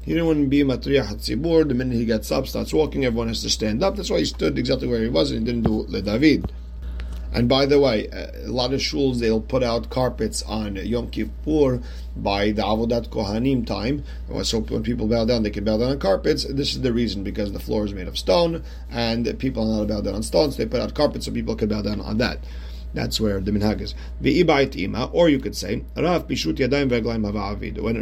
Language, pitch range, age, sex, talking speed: English, 105-130 Hz, 40-59, male, 220 wpm